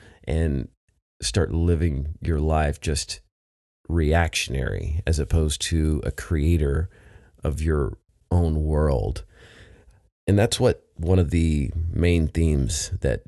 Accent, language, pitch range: American, English, 75-95 Hz